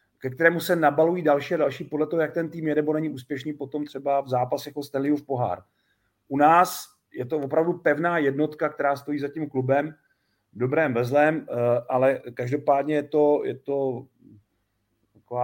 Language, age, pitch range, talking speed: Czech, 40-59, 120-150 Hz, 175 wpm